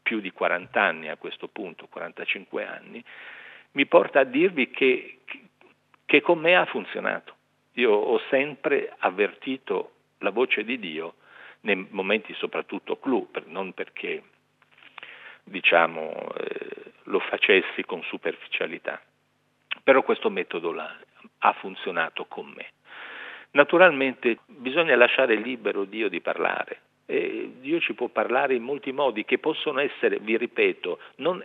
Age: 50-69